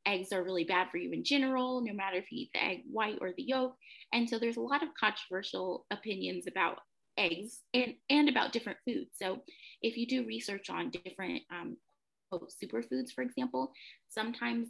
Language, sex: English, female